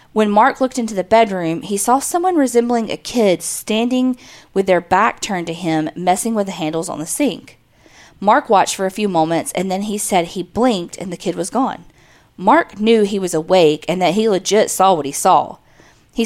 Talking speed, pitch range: 210 wpm, 175-225 Hz